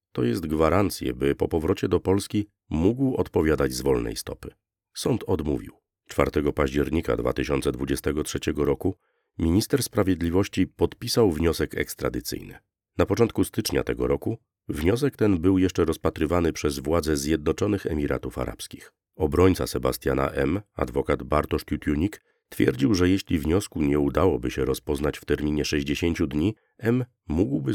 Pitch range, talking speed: 75-95 Hz, 130 wpm